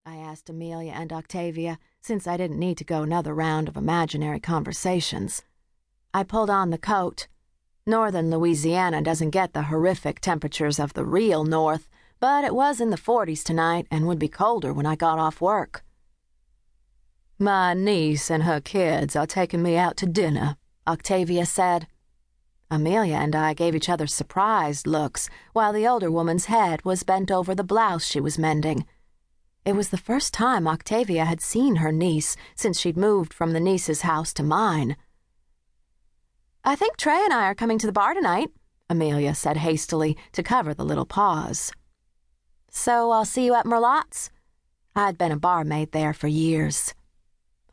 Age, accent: 40-59, American